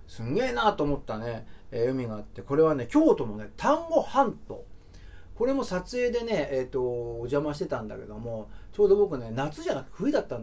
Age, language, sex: 40-59, Japanese, male